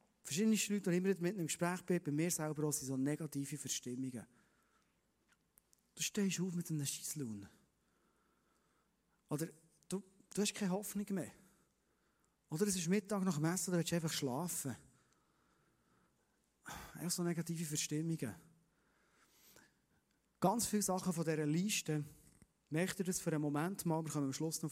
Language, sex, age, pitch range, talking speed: German, male, 40-59, 145-185 Hz, 150 wpm